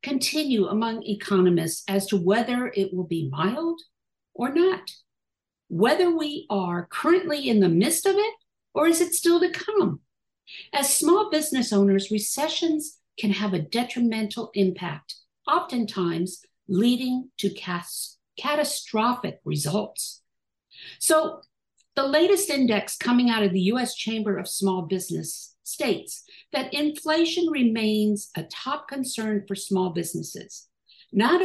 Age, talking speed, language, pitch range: 50-69, 125 wpm, English, 195-280 Hz